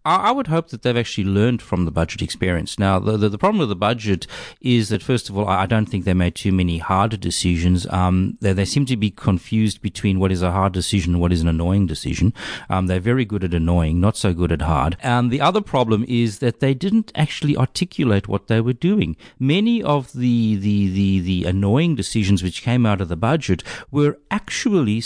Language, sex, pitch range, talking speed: English, male, 95-135 Hz, 225 wpm